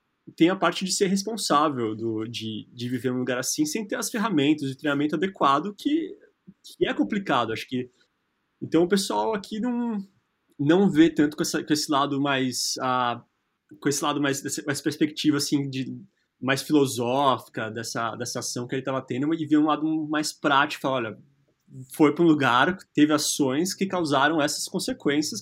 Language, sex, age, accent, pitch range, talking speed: Portuguese, male, 20-39, Brazilian, 125-165 Hz, 180 wpm